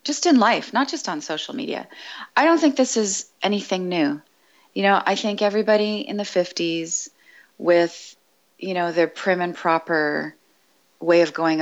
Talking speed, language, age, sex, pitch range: 170 wpm, English, 30-49, female, 155-205 Hz